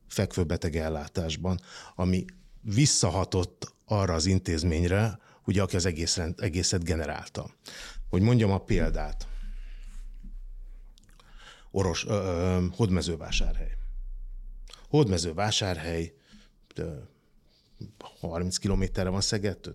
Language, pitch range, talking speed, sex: Hungarian, 85-105 Hz, 75 wpm, male